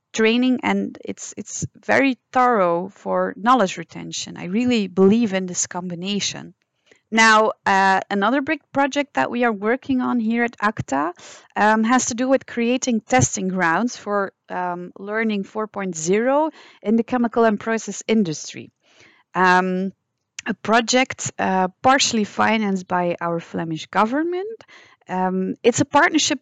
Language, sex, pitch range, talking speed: English, female, 190-245 Hz, 135 wpm